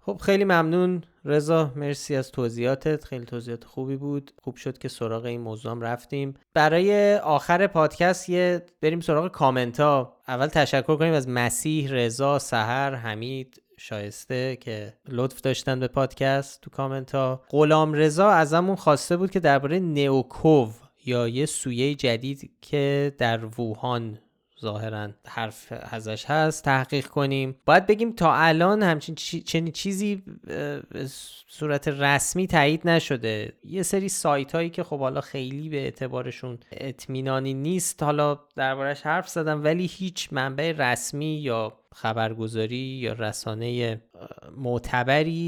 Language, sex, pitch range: Persian, male, 120-155 Hz